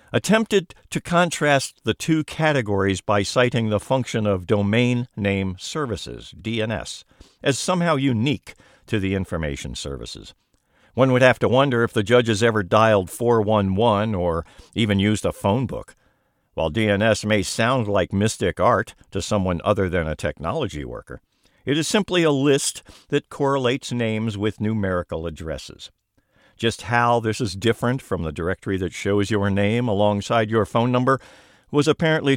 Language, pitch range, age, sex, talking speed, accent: English, 95-125 Hz, 60-79, male, 150 wpm, American